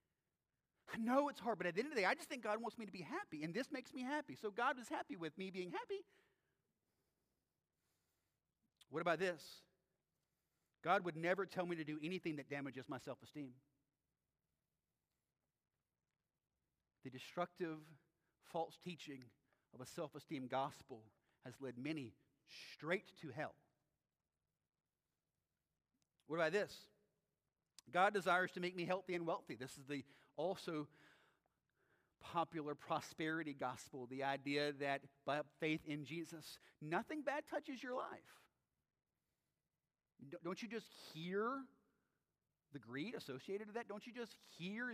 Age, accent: 40-59, American